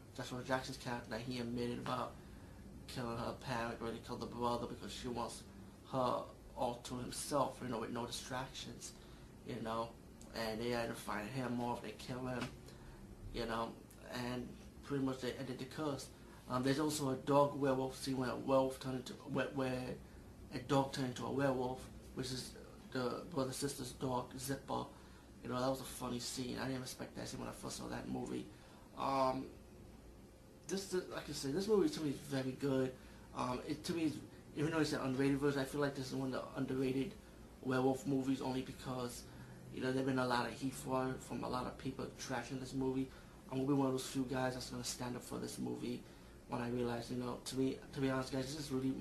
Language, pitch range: English, 120-135 Hz